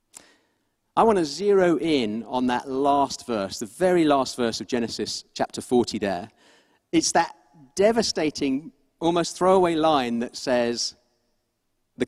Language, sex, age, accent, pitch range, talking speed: English, male, 40-59, British, 135-210 Hz, 135 wpm